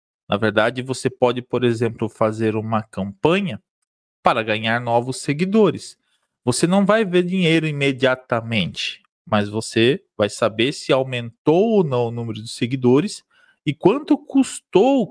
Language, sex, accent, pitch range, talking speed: Portuguese, male, Brazilian, 115-170 Hz, 135 wpm